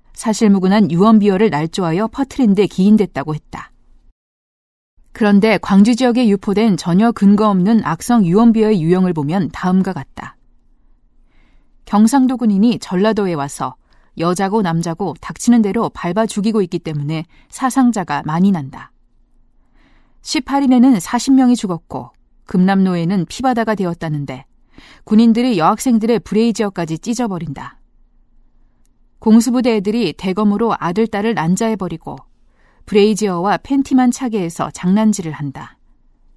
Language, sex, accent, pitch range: Korean, female, native, 170-230 Hz